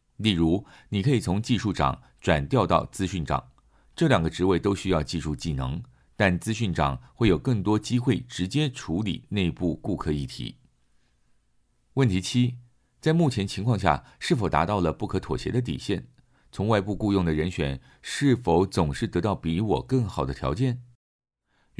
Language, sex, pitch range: Chinese, male, 75-110 Hz